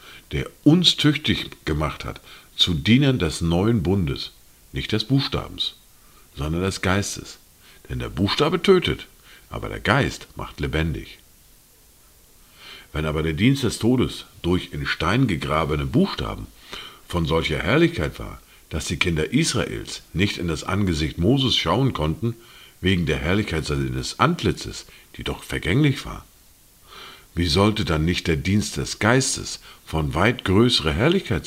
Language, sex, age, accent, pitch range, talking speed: German, male, 50-69, German, 80-110 Hz, 135 wpm